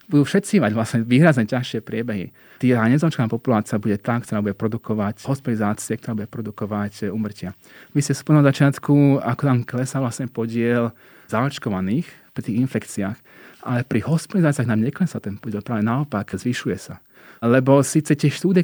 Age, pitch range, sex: 30-49, 110-135 Hz, male